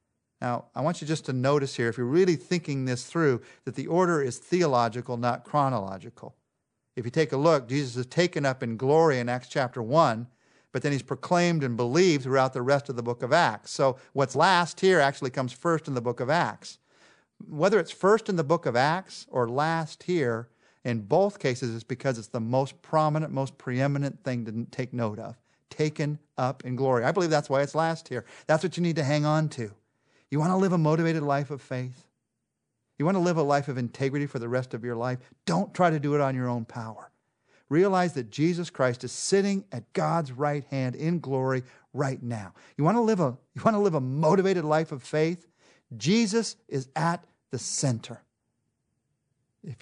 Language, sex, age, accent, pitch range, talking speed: English, male, 50-69, American, 125-160 Hz, 210 wpm